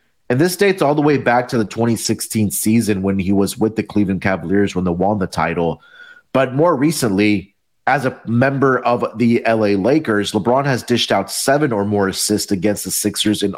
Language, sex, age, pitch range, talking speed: English, male, 30-49, 100-125 Hz, 200 wpm